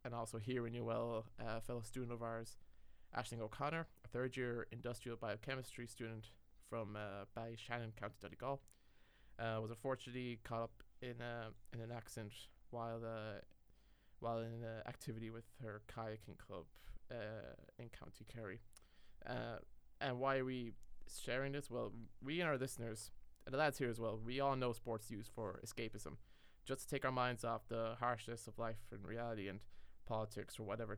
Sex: male